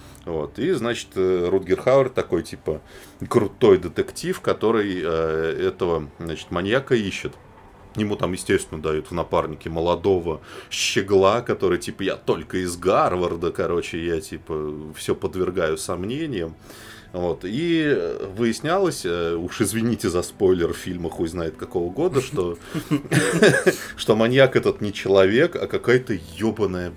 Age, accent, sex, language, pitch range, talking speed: 20-39, native, male, Russian, 90-120 Hz, 125 wpm